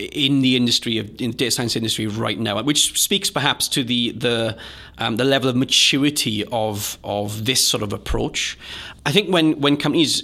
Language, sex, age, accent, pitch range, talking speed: English, male, 30-49, British, 110-130 Hz, 195 wpm